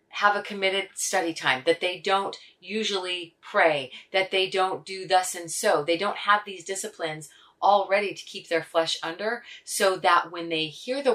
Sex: female